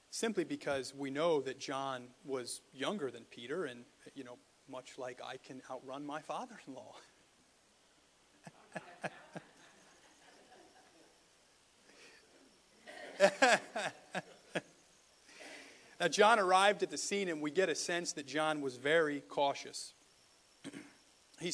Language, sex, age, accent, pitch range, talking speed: English, male, 40-59, American, 140-200 Hz, 105 wpm